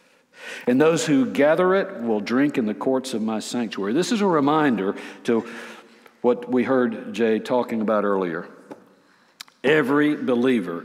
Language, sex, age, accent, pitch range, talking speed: English, male, 60-79, American, 110-145 Hz, 150 wpm